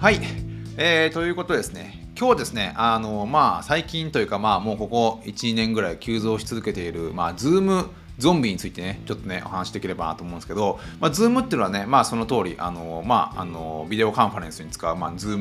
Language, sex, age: Japanese, male, 30-49